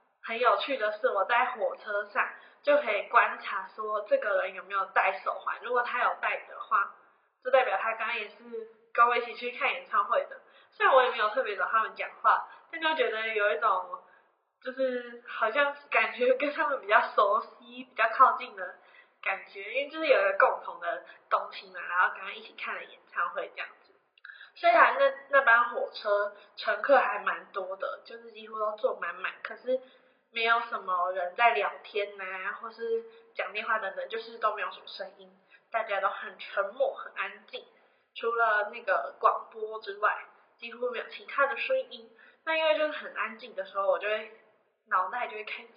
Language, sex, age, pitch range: Chinese, female, 10-29, 205-275 Hz